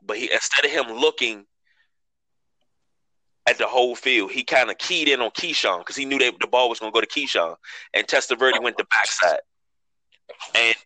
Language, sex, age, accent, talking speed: English, male, 20-39, American, 180 wpm